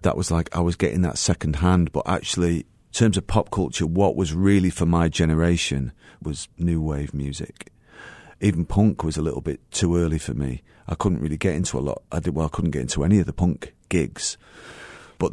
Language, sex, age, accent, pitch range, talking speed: English, male, 40-59, British, 75-90 Hz, 220 wpm